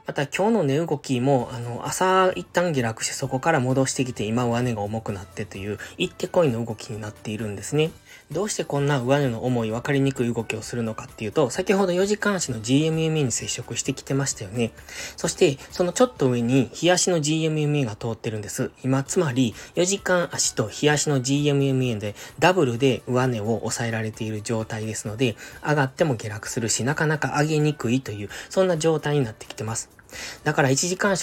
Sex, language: male, Japanese